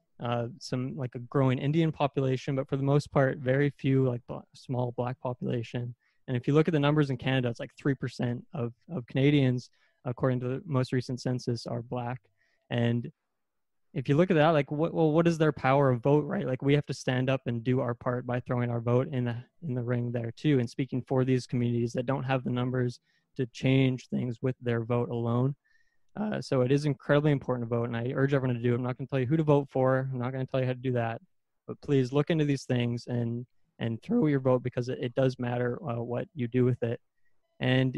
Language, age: English, 20-39